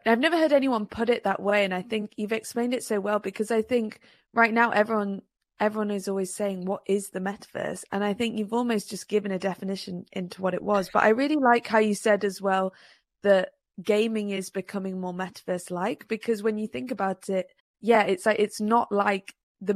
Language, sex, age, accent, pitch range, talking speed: English, female, 20-39, British, 185-210 Hz, 220 wpm